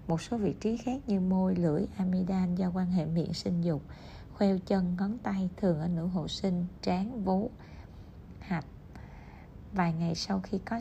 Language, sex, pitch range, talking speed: Vietnamese, female, 165-195 Hz, 180 wpm